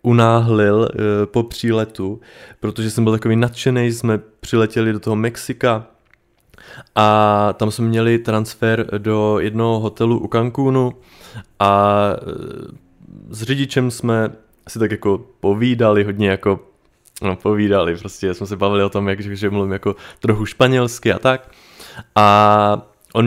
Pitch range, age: 105-130 Hz, 20-39